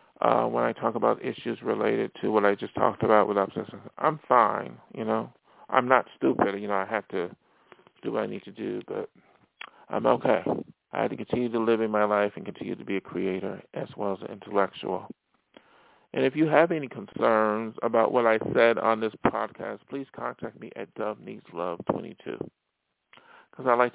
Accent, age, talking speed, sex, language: American, 40-59, 195 wpm, male, English